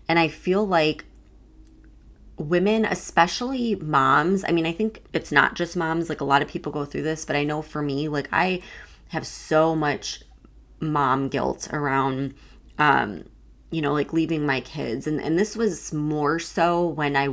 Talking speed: 175 wpm